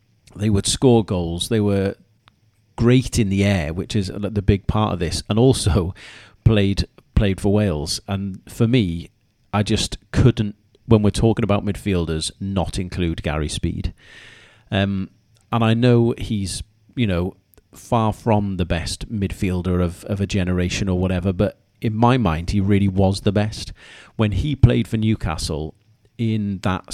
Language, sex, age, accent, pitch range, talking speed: English, male, 40-59, British, 95-115 Hz, 160 wpm